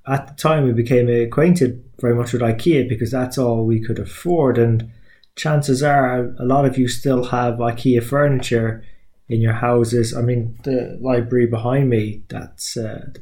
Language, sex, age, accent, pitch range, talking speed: English, male, 20-39, British, 115-135 Hz, 175 wpm